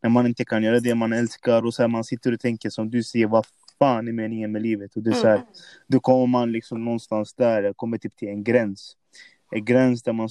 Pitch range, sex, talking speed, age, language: 115-130 Hz, male, 260 wpm, 20-39, Swedish